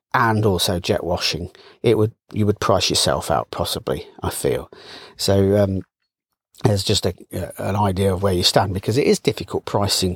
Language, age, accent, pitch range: English, 40-59, British, 100-125 Hz